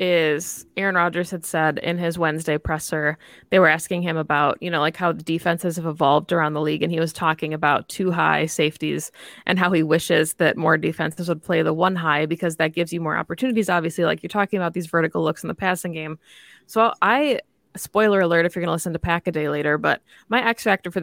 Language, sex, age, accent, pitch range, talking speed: English, female, 20-39, American, 160-185 Hz, 235 wpm